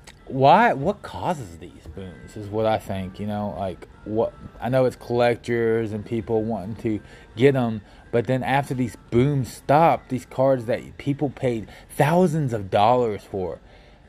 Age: 20-39